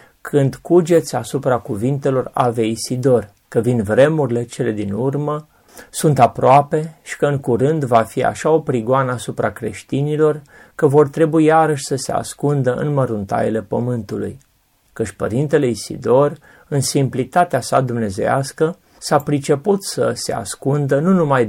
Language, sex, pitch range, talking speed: Romanian, male, 120-155 Hz, 135 wpm